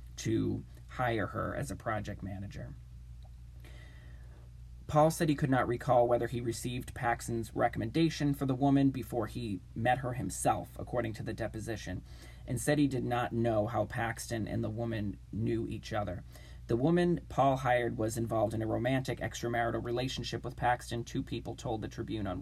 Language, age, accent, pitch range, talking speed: English, 20-39, American, 100-130 Hz, 170 wpm